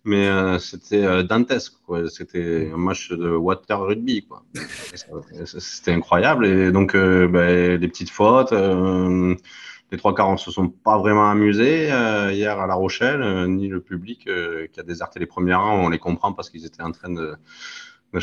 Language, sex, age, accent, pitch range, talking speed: French, male, 30-49, French, 90-110 Hz, 185 wpm